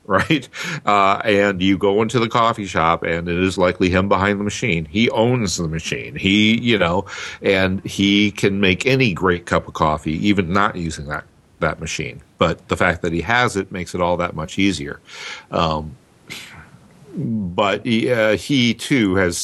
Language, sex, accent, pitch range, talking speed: English, male, American, 90-120 Hz, 180 wpm